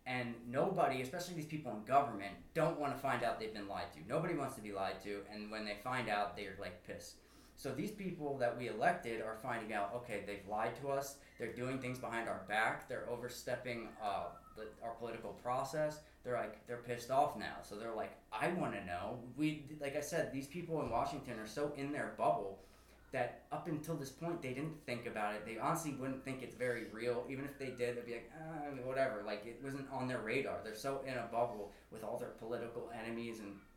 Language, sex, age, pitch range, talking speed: English, male, 20-39, 105-135 Hz, 225 wpm